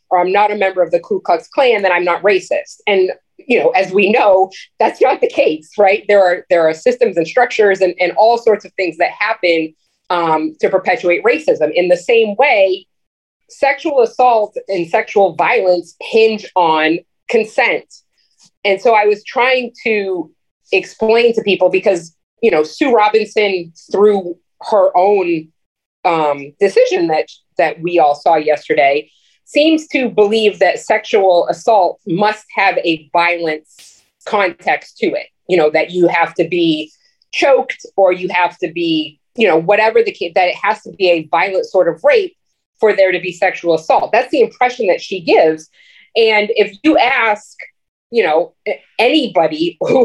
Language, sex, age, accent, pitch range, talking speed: English, female, 30-49, American, 175-240 Hz, 170 wpm